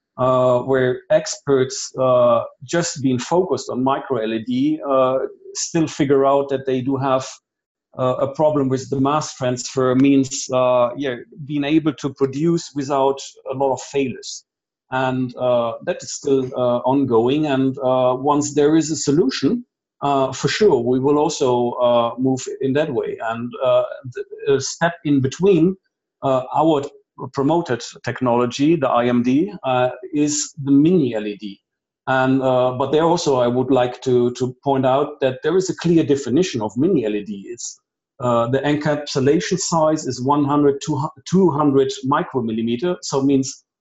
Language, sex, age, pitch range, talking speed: English, male, 40-59, 130-155 Hz, 160 wpm